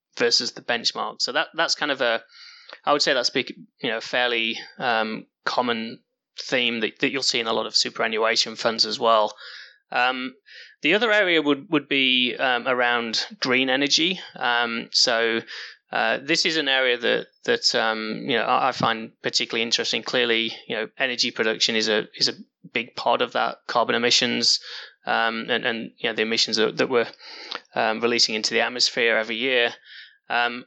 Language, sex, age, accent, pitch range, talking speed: English, male, 20-39, British, 115-130 Hz, 180 wpm